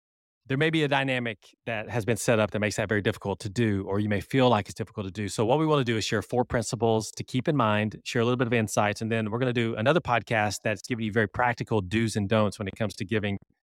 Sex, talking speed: male, 295 wpm